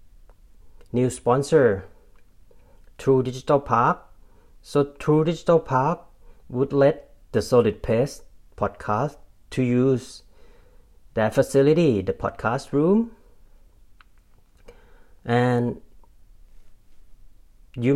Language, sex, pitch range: Thai, male, 105-140 Hz